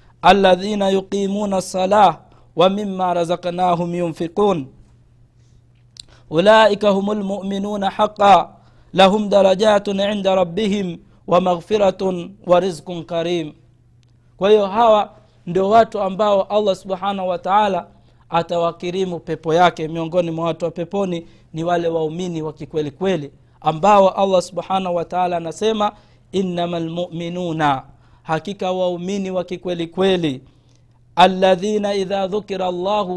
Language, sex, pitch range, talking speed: Swahili, male, 165-200 Hz, 115 wpm